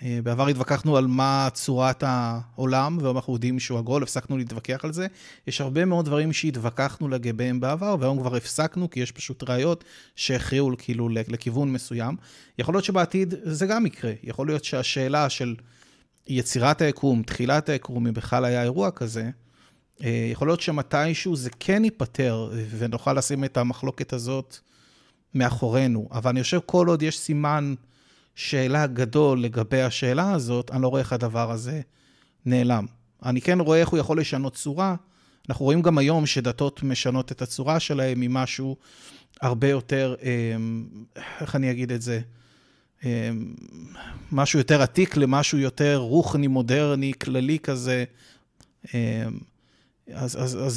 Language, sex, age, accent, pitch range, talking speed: Hebrew, male, 30-49, native, 125-145 Hz, 140 wpm